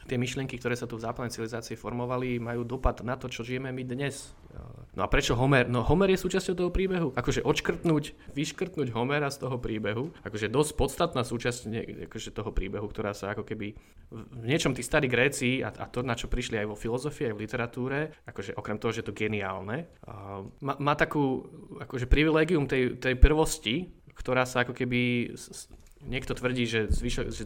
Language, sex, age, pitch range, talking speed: Slovak, male, 20-39, 110-135 Hz, 195 wpm